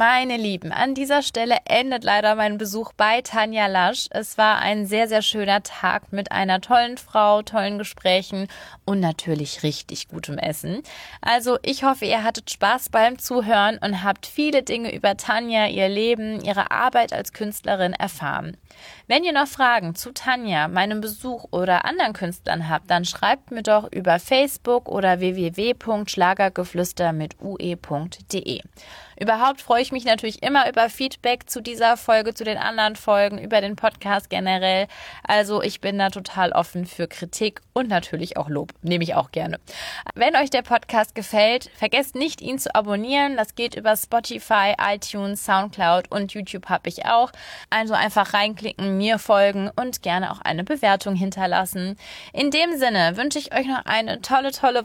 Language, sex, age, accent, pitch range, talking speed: German, female, 20-39, German, 190-235 Hz, 160 wpm